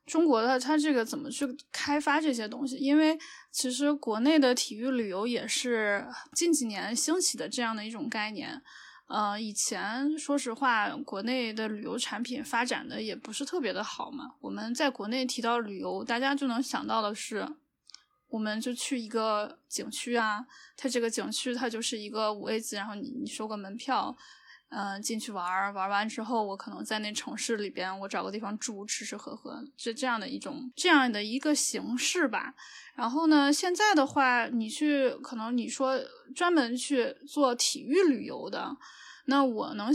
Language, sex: Chinese, female